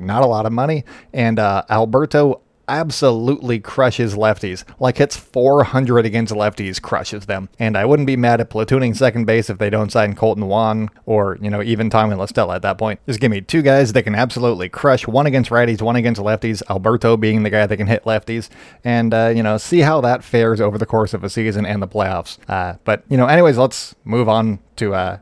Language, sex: English, male